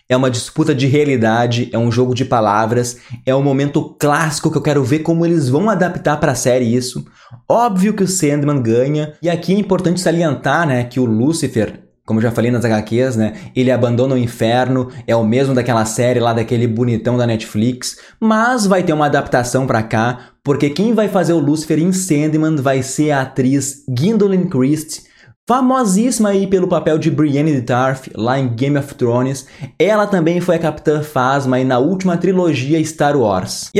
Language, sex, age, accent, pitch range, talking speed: Portuguese, male, 20-39, Brazilian, 125-165 Hz, 190 wpm